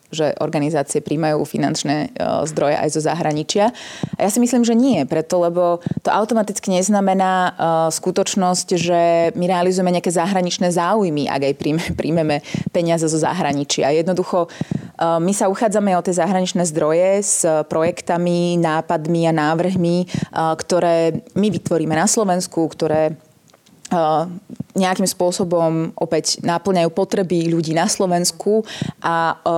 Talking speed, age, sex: 125 wpm, 20-39, female